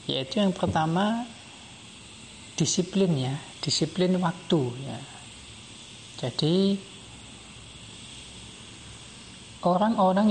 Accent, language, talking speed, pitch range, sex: native, Indonesian, 60 wpm, 135-185 Hz, male